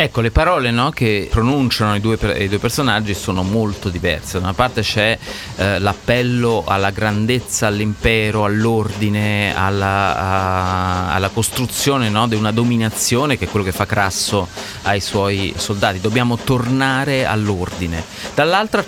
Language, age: Italian, 30-49